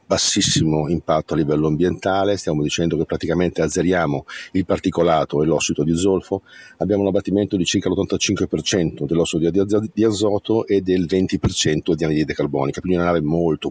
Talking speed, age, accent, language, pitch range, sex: 155 wpm, 50-69, native, Italian, 85-100 Hz, male